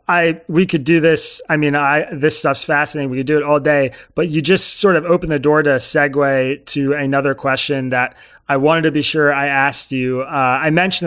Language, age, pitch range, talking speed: English, 30-49, 130-155 Hz, 230 wpm